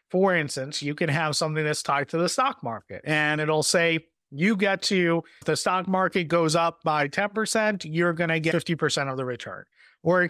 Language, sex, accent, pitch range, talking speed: English, male, American, 155-185 Hz, 210 wpm